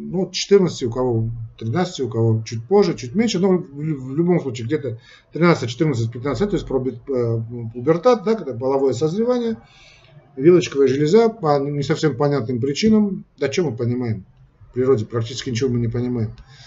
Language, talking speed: Russian, 155 wpm